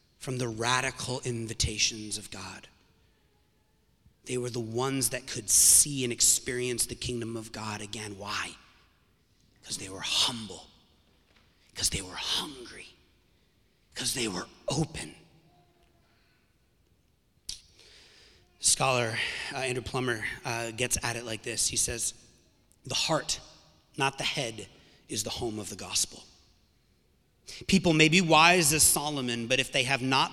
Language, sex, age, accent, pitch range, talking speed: English, male, 30-49, American, 115-145 Hz, 135 wpm